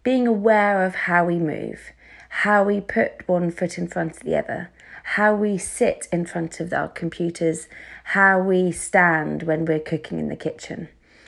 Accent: British